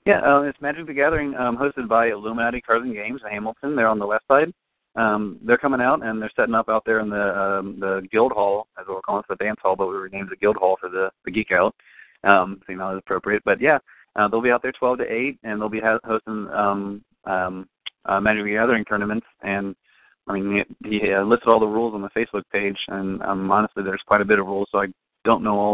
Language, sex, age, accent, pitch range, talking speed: English, male, 30-49, American, 100-115 Hz, 255 wpm